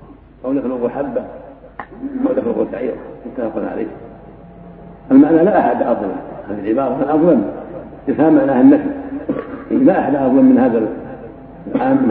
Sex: male